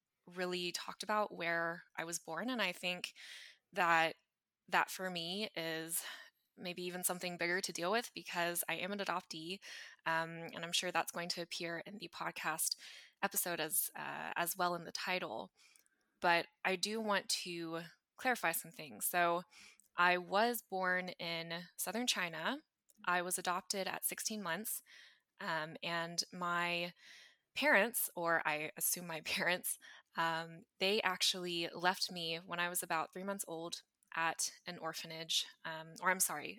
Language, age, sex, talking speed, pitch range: English, 20-39, female, 155 wpm, 170-195 Hz